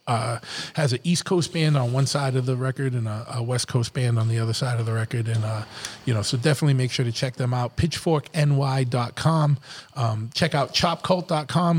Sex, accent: male, American